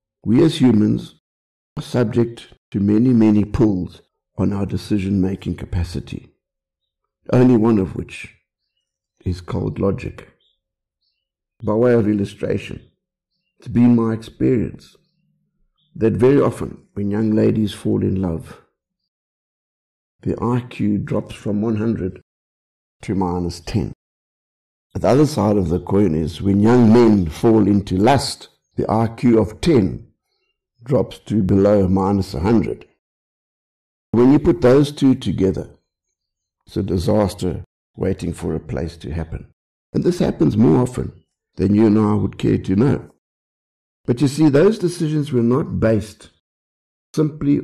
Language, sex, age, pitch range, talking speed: English, male, 60-79, 90-120 Hz, 130 wpm